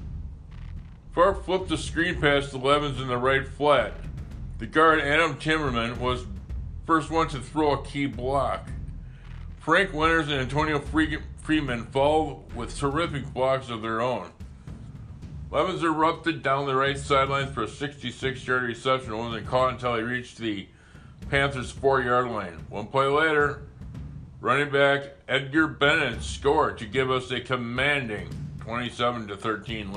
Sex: male